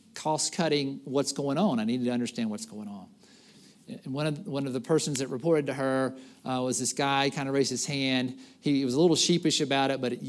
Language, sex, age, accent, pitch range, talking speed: English, male, 50-69, American, 135-180 Hz, 250 wpm